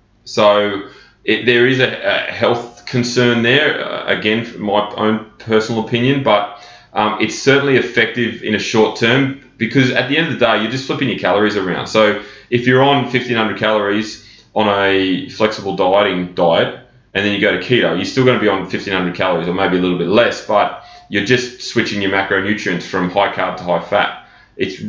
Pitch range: 105-125 Hz